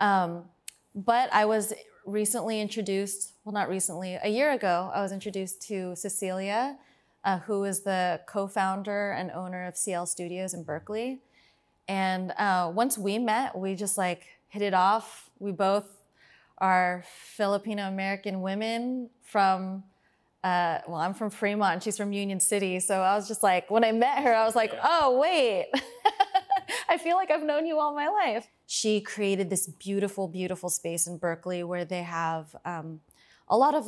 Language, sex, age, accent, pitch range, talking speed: English, female, 20-39, American, 180-210 Hz, 170 wpm